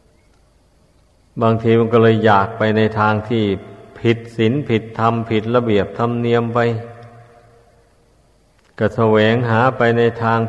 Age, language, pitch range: 50-69, Thai, 105-120 Hz